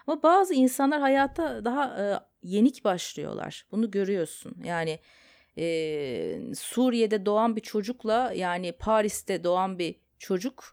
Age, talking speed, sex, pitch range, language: 30-49, 115 wpm, female, 170-240 Hz, Turkish